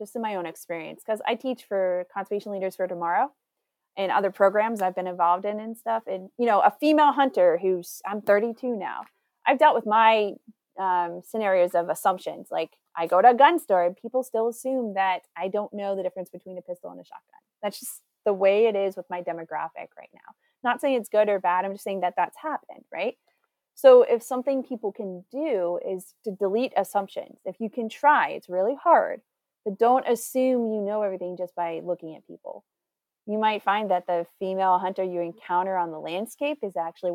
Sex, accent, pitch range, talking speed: female, American, 180-230 Hz, 210 wpm